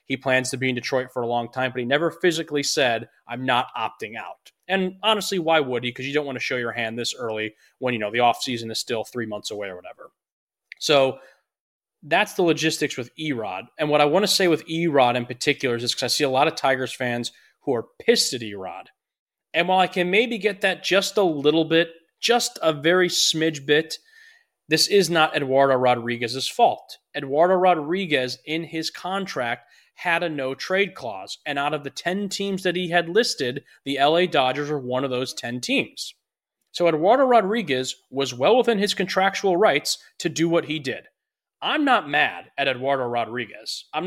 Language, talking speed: English, 200 wpm